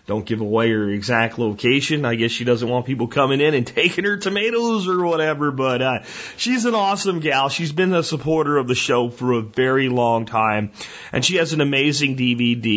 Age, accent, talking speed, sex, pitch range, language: 30-49, American, 205 wpm, male, 120-160 Hz, English